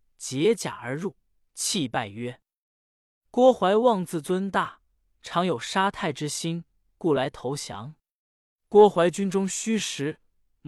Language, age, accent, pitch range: Chinese, 20-39, native, 145-200 Hz